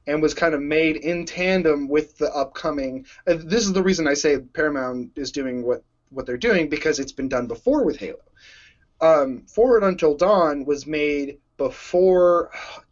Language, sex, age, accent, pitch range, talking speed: English, male, 20-39, American, 135-170 Hz, 180 wpm